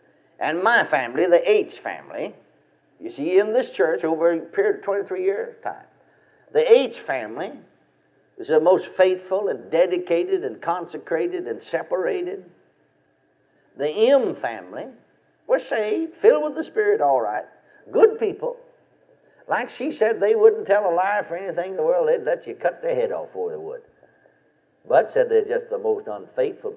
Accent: American